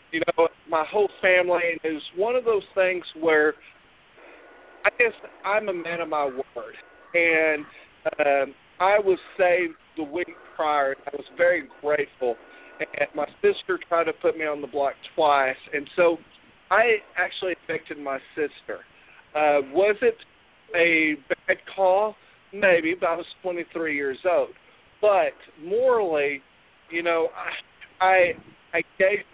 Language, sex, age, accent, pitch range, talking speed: English, male, 40-59, American, 150-205 Hz, 145 wpm